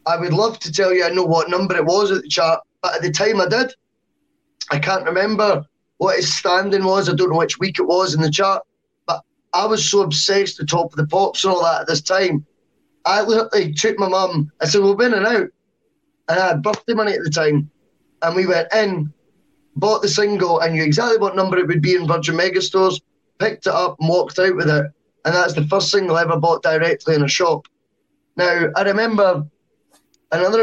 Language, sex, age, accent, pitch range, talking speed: English, male, 10-29, British, 160-205 Hz, 230 wpm